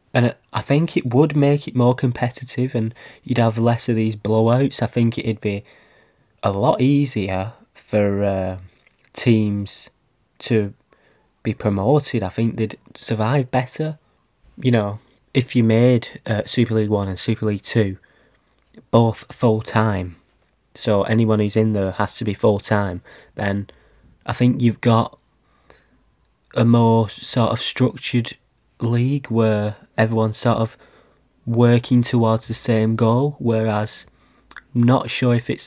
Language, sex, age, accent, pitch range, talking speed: English, male, 20-39, British, 105-125 Hz, 140 wpm